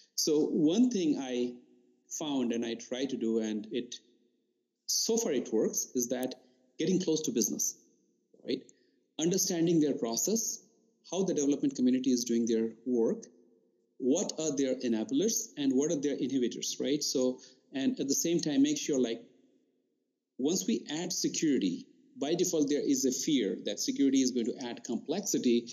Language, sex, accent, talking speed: English, male, Indian, 165 wpm